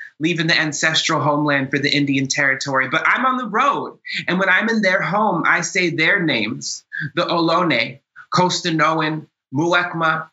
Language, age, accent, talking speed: English, 20-39, American, 155 wpm